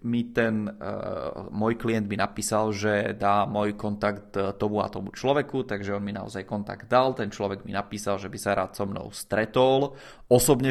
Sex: male